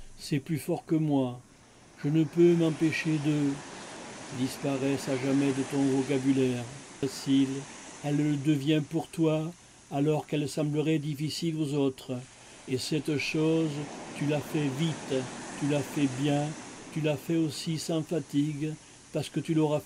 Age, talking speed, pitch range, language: 60-79, 150 wpm, 135-160 Hz, English